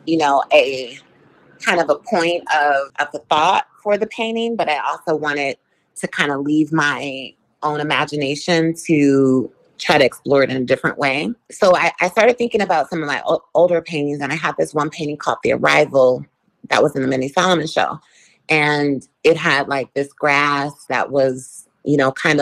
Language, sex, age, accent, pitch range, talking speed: English, female, 30-49, American, 135-155 Hz, 195 wpm